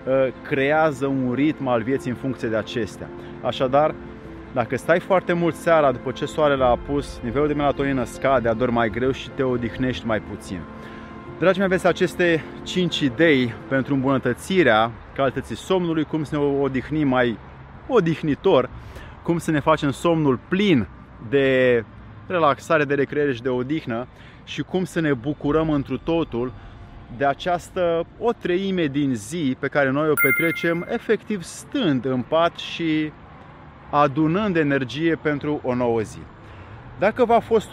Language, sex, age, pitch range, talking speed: Romanian, male, 30-49, 125-165 Hz, 150 wpm